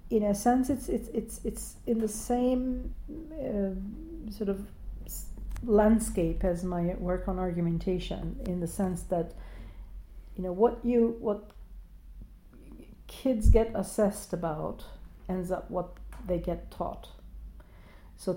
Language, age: English, 50-69